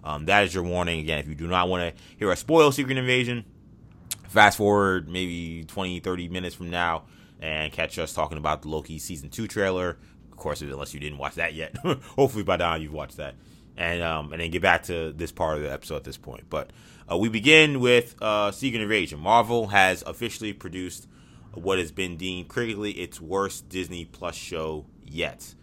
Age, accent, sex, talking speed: 20-39, American, male, 205 wpm